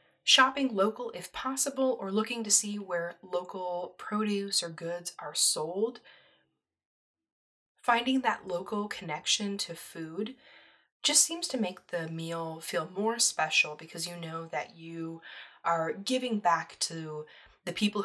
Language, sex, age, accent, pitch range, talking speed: English, female, 20-39, American, 165-215 Hz, 135 wpm